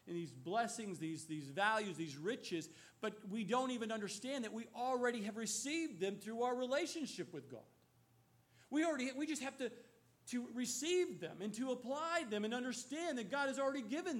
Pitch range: 235-300 Hz